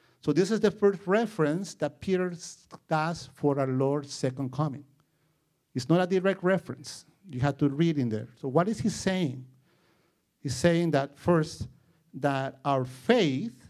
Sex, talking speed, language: male, 160 wpm, English